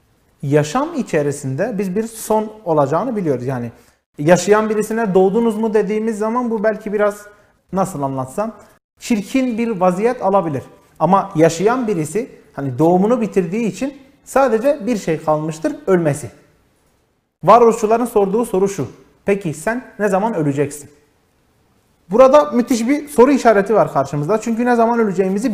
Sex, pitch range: male, 155-225 Hz